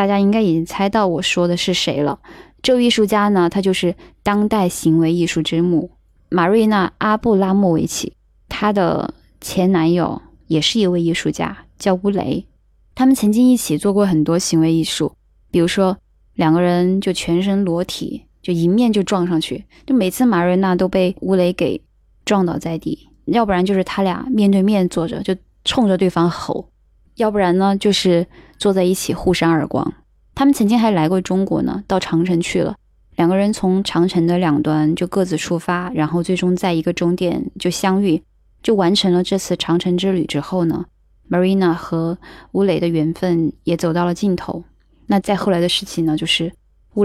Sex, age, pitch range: female, 10-29, 170-195 Hz